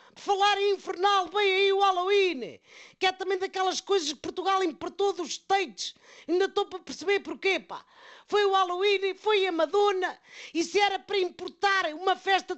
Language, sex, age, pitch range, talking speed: Portuguese, female, 40-59, 345-390 Hz, 165 wpm